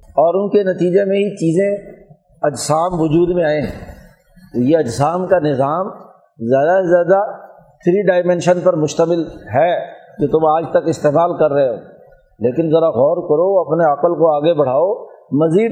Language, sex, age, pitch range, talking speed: Urdu, male, 50-69, 155-195 Hz, 160 wpm